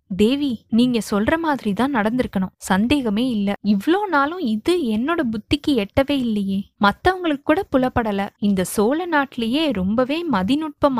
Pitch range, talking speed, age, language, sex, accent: 205-270 Hz, 120 wpm, 20-39, Tamil, female, native